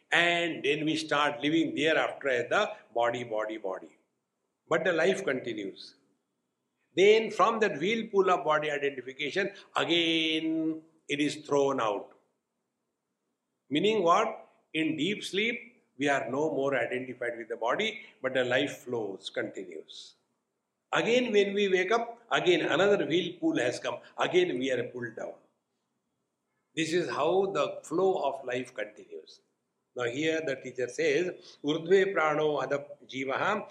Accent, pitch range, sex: Indian, 130-200 Hz, male